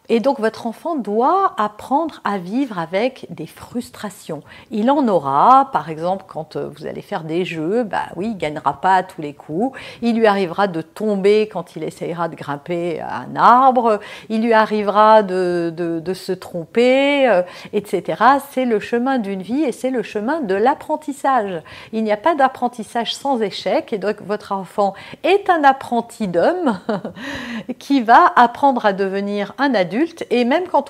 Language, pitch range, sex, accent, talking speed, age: French, 195-275 Hz, female, French, 175 wpm, 50-69